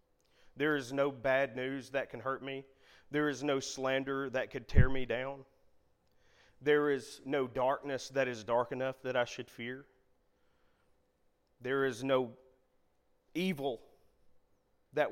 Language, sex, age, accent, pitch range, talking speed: English, male, 30-49, American, 125-150 Hz, 140 wpm